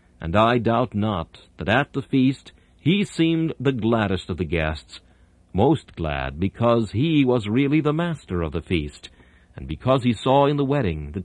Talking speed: 180 wpm